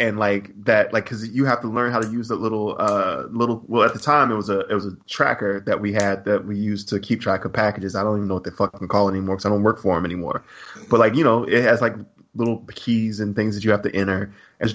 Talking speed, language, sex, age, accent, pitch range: 290 wpm, English, male, 20-39, American, 105-130 Hz